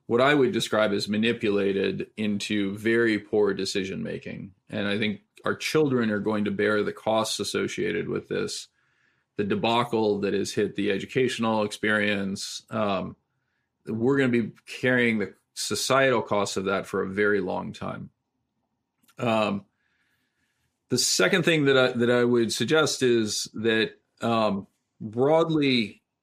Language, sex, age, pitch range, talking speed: English, male, 40-59, 100-120 Hz, 140 wpm